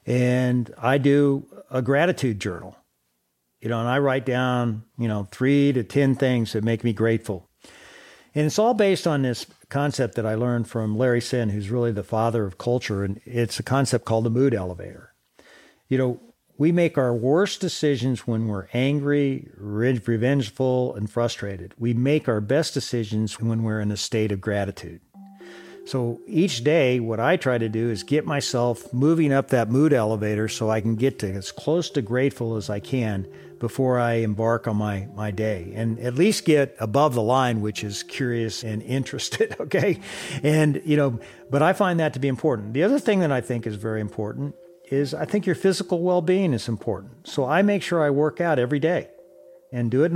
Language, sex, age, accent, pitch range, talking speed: English, male, 50-69, American, 115-145 Hz, 195 wpm